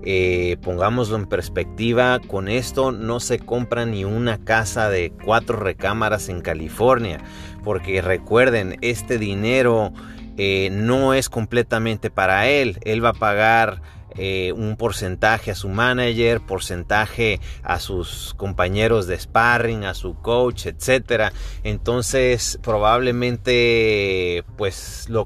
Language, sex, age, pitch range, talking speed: Spanish, male, 30-49, 95-125 Hz, 120 wpm